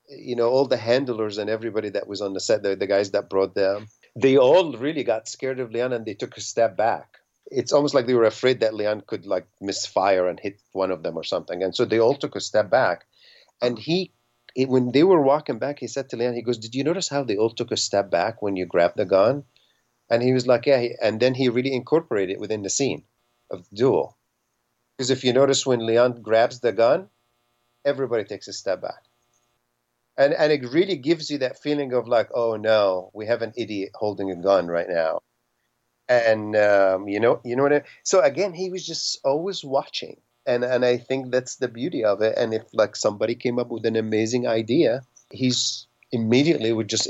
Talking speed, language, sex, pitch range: 225 wpm, Swedish, male, 110-130 Hz